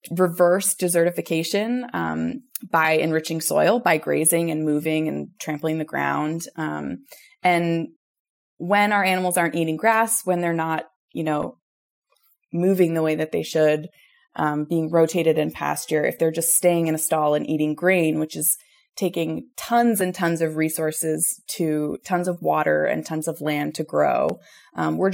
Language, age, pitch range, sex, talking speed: English, 20-39, 155-190 Hz, female, 160 wpm